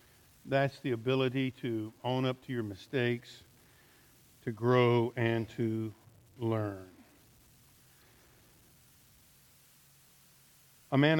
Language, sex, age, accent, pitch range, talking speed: English, male, 50-69, American, 125-145 Hz, 85 wpm